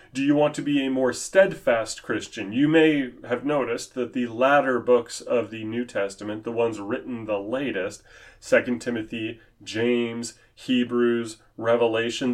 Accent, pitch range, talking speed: American, 115-160 Hz, 150 wpm